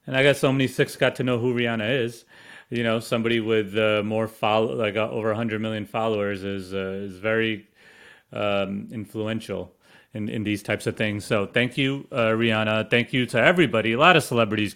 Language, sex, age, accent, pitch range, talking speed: English, male, 30-49, American, 105-130 Hz, 205 wpm